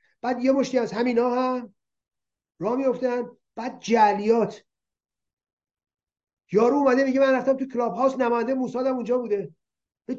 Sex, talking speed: male, 135 wpm